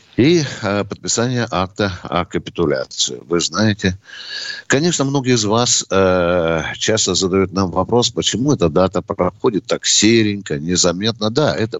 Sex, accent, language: male, native, Russian